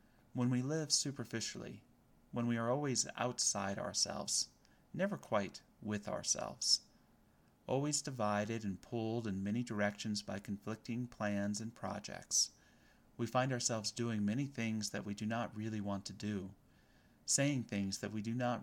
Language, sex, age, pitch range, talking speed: English, male, 30-49, 100-120 Hz, 150 wpm